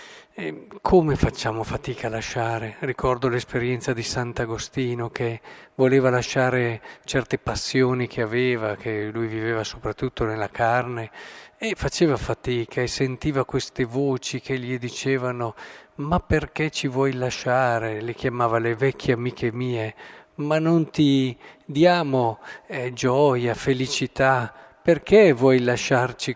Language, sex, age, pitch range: Italian, male, 50-69, 115-135 Hz